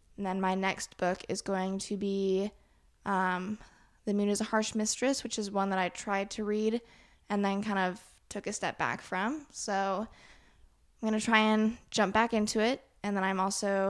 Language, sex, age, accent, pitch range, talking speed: English, female, 10-29, American, 195-230 Hz, 205 wpm